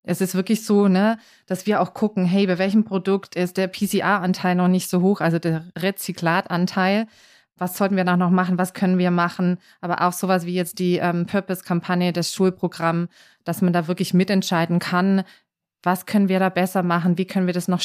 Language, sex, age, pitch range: German, female, 20-39, 180-195 Hz